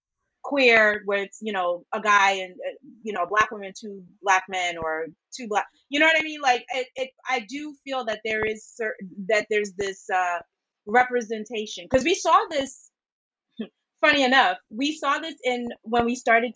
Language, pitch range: English, 210-275 Hz